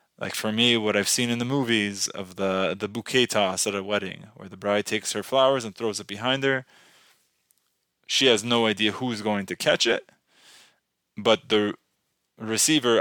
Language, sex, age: English, male, 20-39